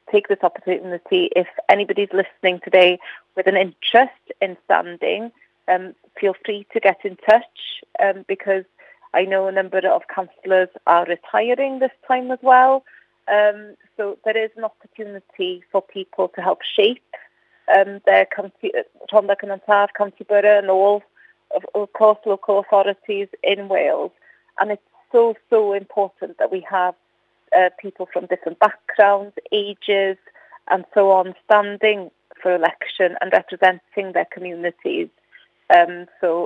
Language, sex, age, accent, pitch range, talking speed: English, female, 30-49, British, 185-220 Hz, 140 wpm